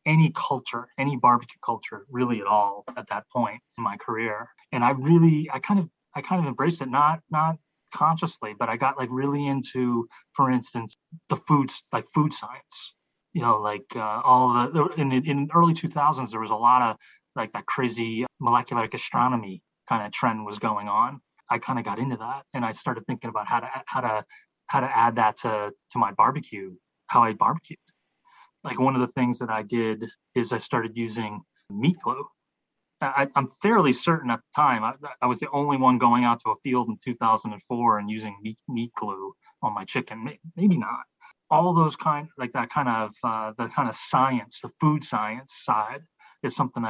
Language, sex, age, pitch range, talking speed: English, male, 30-49, 120-155 Hz, 200 wpm